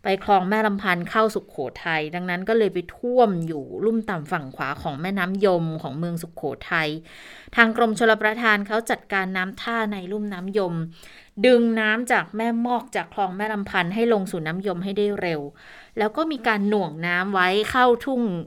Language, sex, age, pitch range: Thai, female, 20-39, 170-210 Hz